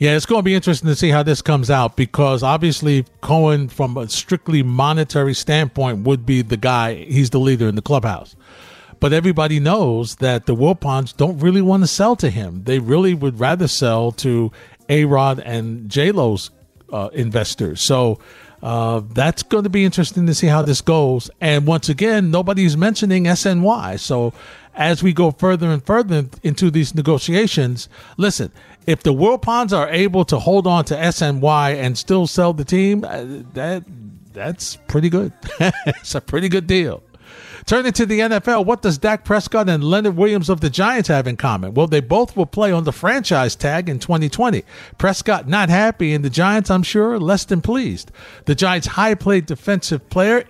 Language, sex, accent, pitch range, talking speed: English, male, American, 135-190 Hz, 180 wpm